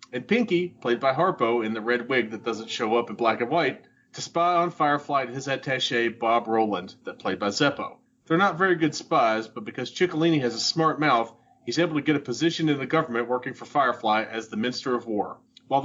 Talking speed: 225 wpm